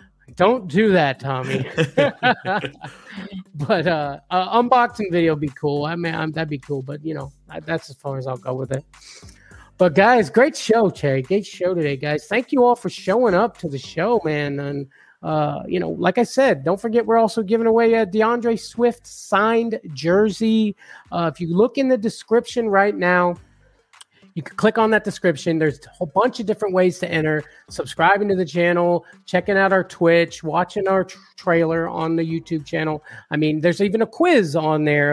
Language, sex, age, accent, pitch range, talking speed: English, male, 30-49, American, 145-200 Hz, 190 wpm